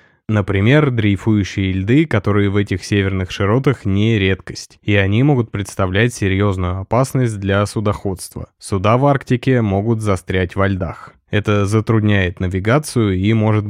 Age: 20-39